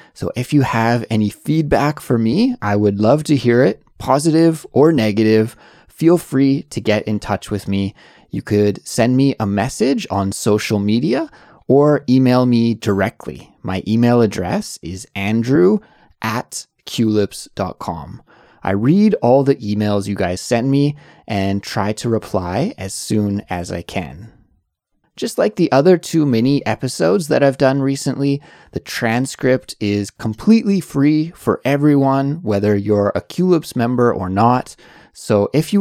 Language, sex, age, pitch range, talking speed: English, male, 20-39, 100-140 Hz, 150 wpm